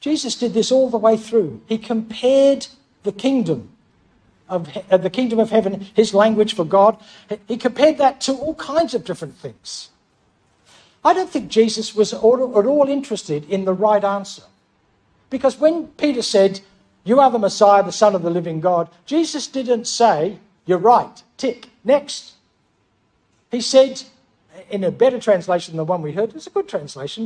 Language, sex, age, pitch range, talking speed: English, male, 60-79, 200-260 Hz, 170 wpm